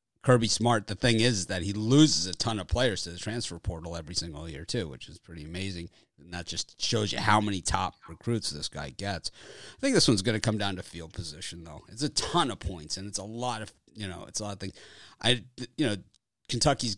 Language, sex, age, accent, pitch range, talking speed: English, male, 30-49, American, 90-115 Hz, 245 wpm